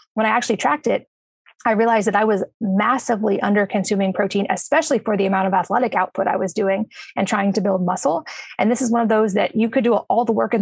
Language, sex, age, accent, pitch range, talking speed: English, female, 20-39, American, 195-235 Hz, 235 wpm